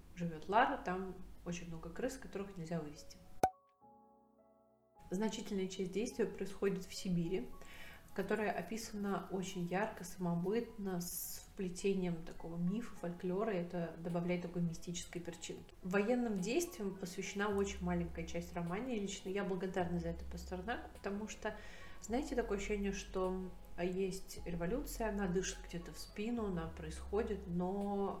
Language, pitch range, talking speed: Russian, 175-200 Hz, 130 wpm